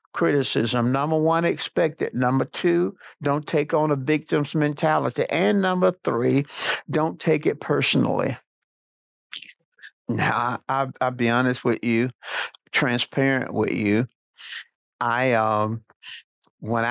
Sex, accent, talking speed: male, American, 120 wpm